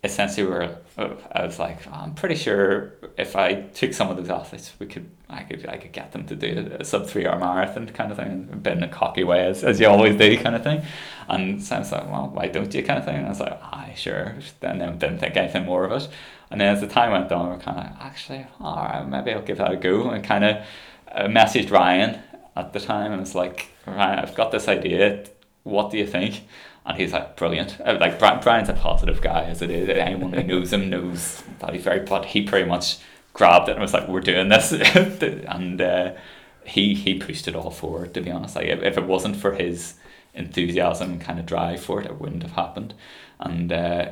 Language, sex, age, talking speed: English, male, 20-39, 240 wpm